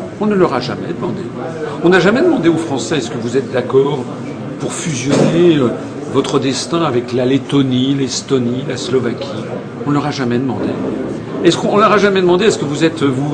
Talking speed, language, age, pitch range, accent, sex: 205 wpm, French, 50-69, 125-160 Hz, French, male